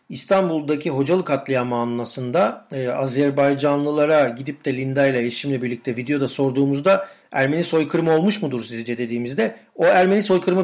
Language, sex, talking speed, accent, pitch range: Turkish, male, 130 wpm, native, 125-150 Hz